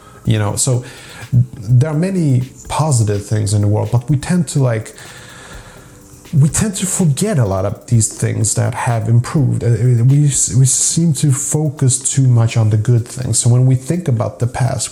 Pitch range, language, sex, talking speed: 110-130 Hz, English, male, 185 wpm